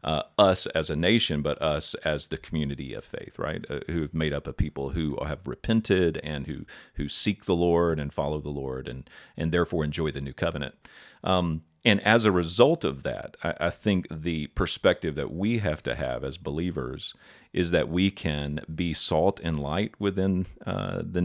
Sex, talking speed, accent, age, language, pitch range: male, 200 wpm, American, 40-59, English, 75-90 Hz